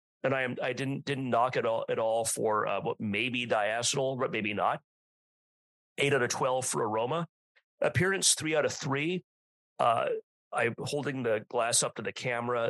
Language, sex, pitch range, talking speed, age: English, male, 115-145 Hz, 185 wpm, 40-59